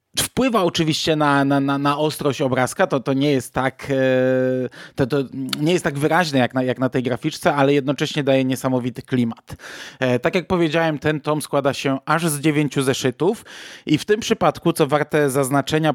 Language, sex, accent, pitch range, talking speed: Polish, male, native, 135-160 Hz, 180 wpm